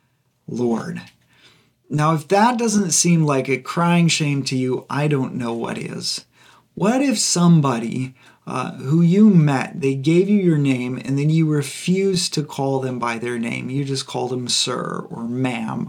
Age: 40-59